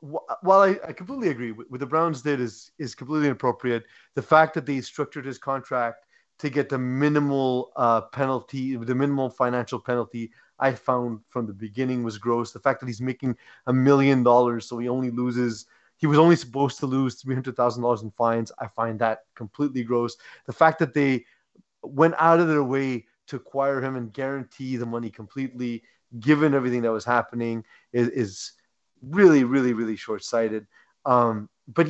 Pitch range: 120-155 Hz